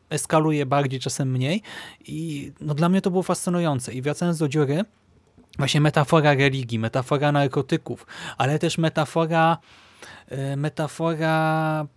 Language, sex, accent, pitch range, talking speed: Polish, male, native, 130-165 Hz, 120 wpm